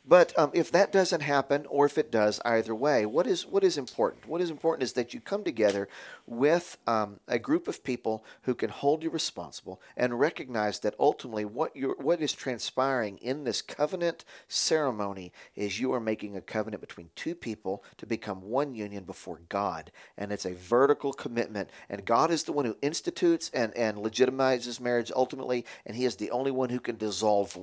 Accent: American